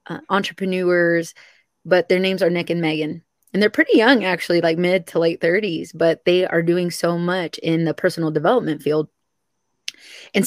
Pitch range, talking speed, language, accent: 170-195 Hz, 180 wpm, English, American